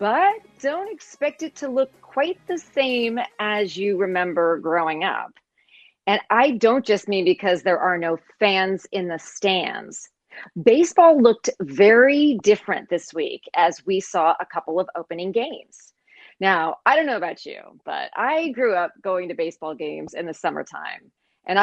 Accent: American